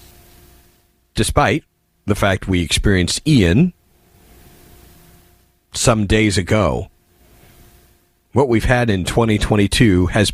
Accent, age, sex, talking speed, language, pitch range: American, 40-59, male, 85 wpm, English, 90-120 Hz